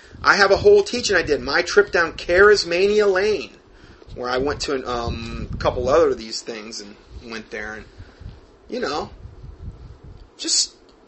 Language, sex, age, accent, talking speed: English, male, 30-49, American, 155 wpm